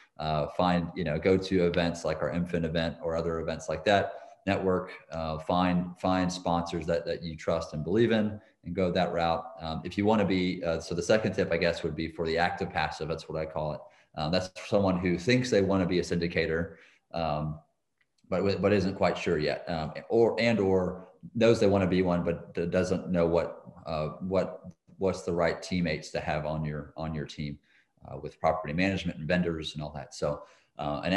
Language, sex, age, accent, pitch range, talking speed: English, male, 30-49, American, 80-90 Hz, 215 wpm